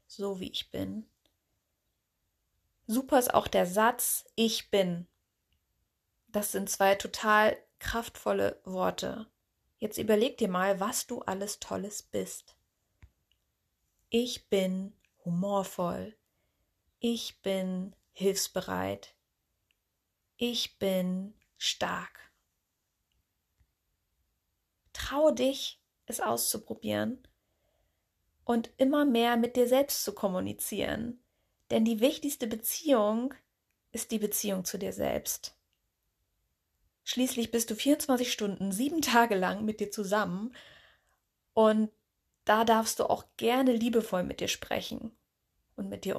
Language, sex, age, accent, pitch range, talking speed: German, female, 30-49, German, 175-235 Hz, 105 wpm